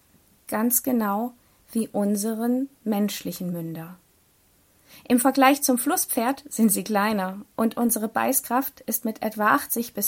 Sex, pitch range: female, 205-255 Hz